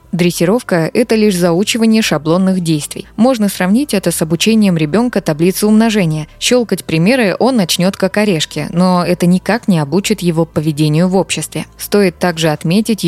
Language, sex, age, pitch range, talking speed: Russian, female, 20-39, 155-190 Hz, 145 wpm